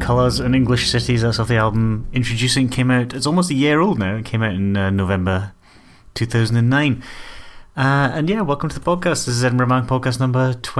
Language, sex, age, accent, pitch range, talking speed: English, male, 30-49, British, 95-120 Hz, 205 wpm